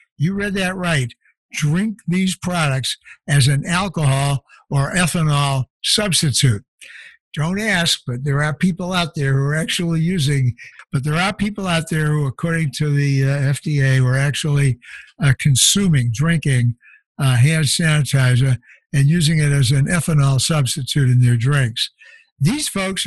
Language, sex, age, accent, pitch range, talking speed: English, male, 60-79, American, 140-175 Hz, 150 wpm